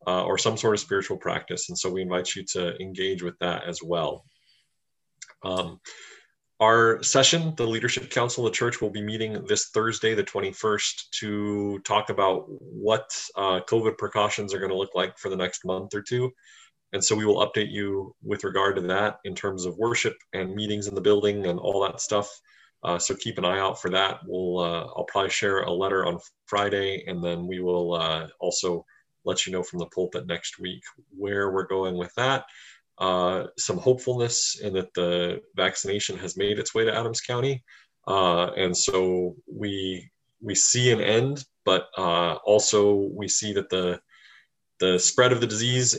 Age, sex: 30-49, male